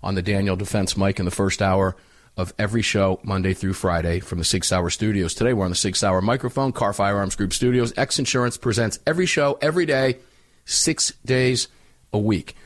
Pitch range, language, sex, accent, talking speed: 100-125 Hz, English, male, American, 185 wpm